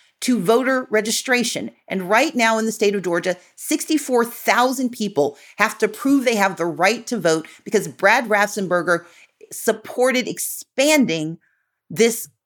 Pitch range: 190-250 Hz